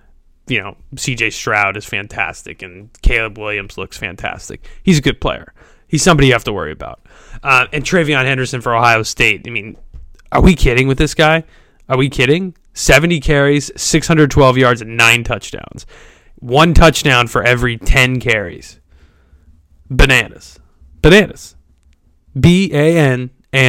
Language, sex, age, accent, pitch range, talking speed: English, male, 20-39, American, 110-145 Hz, 150 wpm